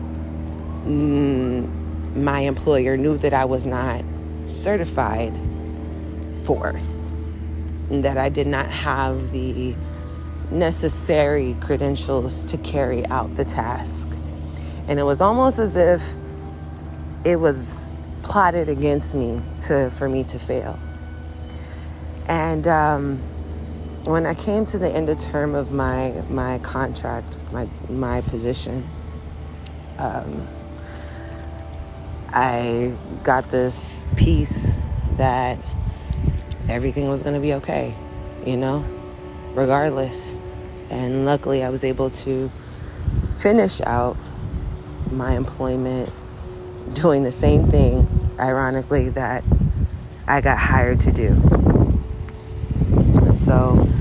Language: English